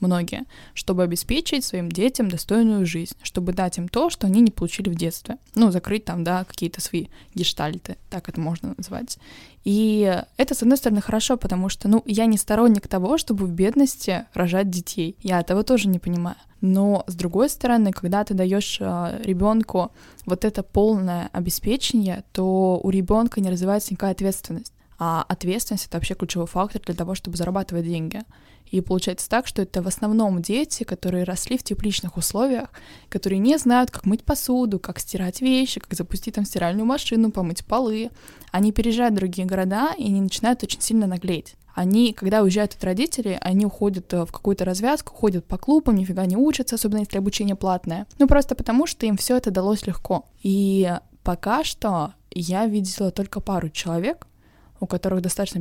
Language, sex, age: Russian, female, 10-29